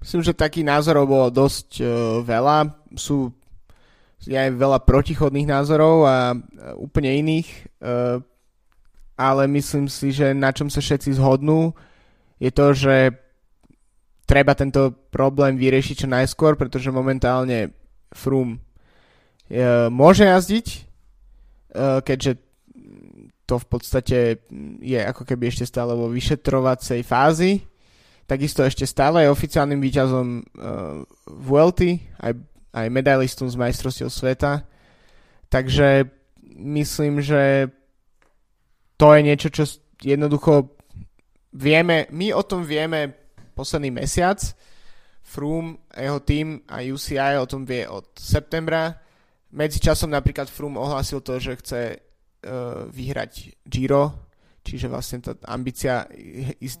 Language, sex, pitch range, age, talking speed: Slovak, male, 125-145 Hz, 20-39, 115 wpm